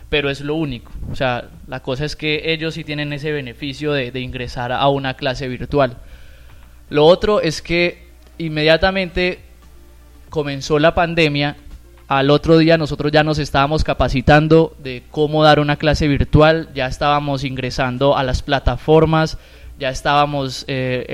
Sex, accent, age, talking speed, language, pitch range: male, Colombian, 20-39, 150 wpm, Spanish, 130-160 Hz